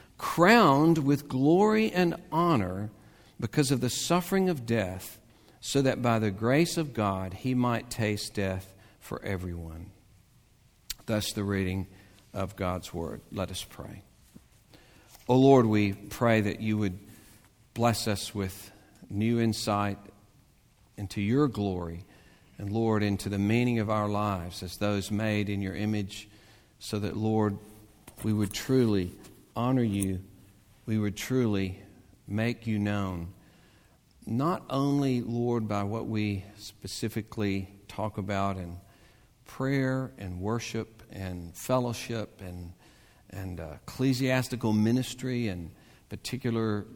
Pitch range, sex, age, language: 100-120 Hz, male, 50-69, English